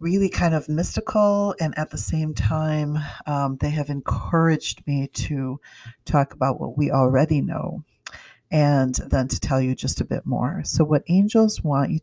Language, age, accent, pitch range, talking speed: English, 50-69, American, 130-150 Hz, 175 wpm